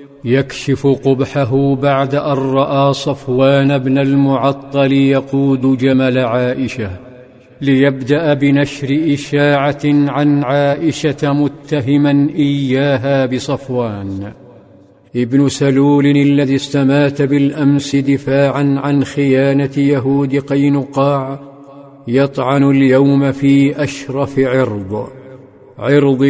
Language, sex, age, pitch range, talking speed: Arabic, male, 50-69, 135-140 Hz, 80 wpm